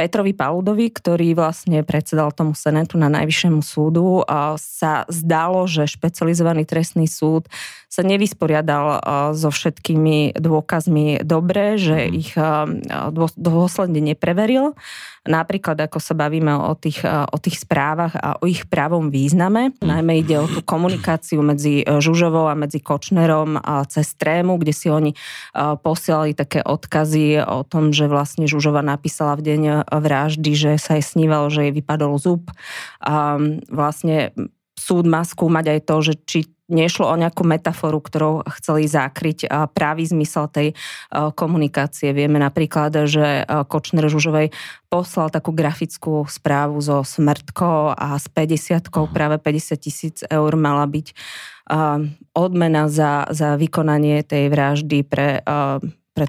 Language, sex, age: Slovak, female, 20-39